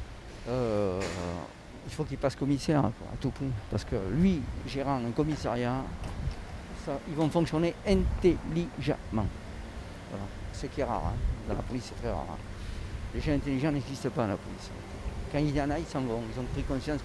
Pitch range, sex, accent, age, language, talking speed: 105-150 Hz, male, French, 50-69, French, 185 wpm